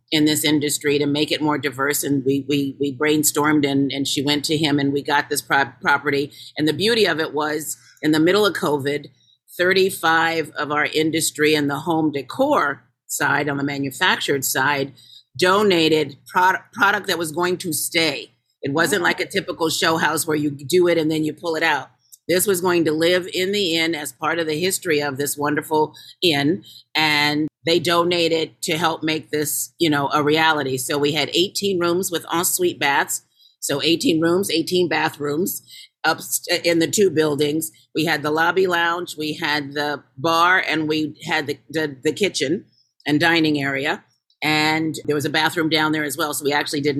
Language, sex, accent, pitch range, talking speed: English, female, American, 145-165 Hz, 195 wpm